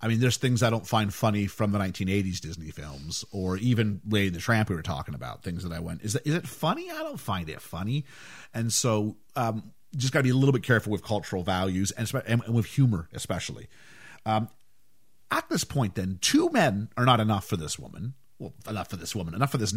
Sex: male